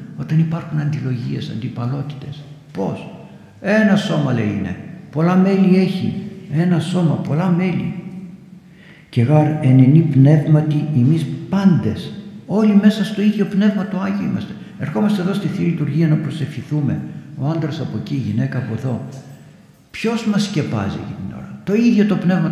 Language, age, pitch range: Greek, 60-79, 120-175 Hz